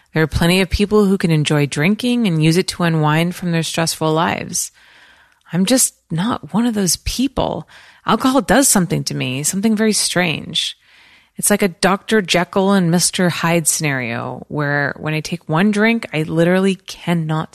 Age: 30-49